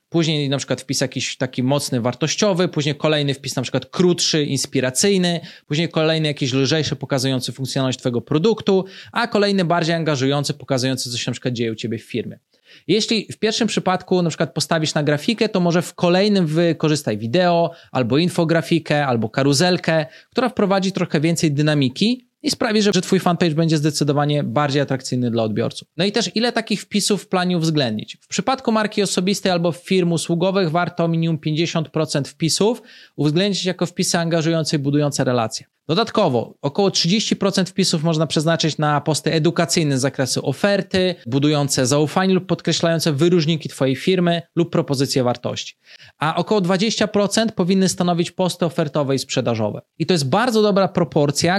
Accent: native